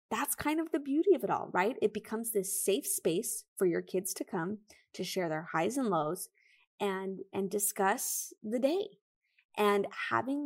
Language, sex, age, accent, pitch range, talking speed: English, female, 20-39, American, 185-230 Hz, 185 wpm